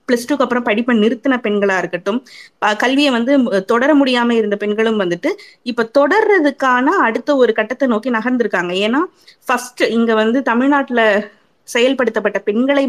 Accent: native